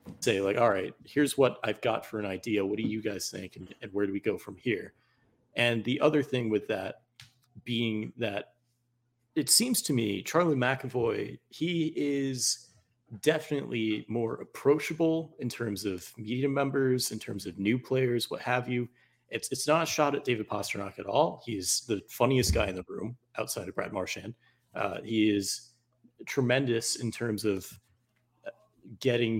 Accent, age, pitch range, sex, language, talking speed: American, 30-49, 105-125 Hz, male, English, 175 wpm